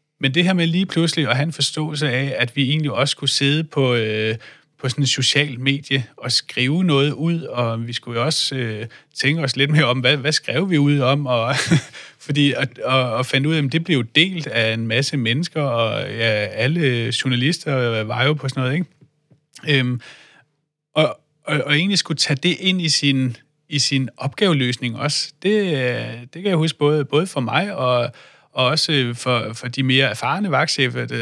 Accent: native